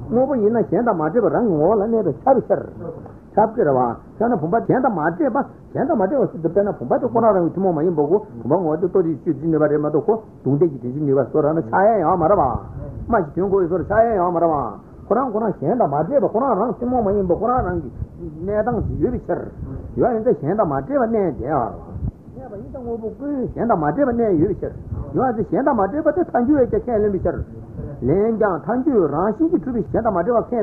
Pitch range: 160-240 Hz